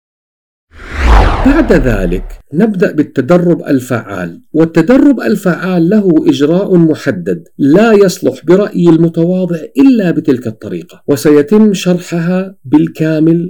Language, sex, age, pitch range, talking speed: Arabic, male, 50-69, 130-185 Hz, 90 wpm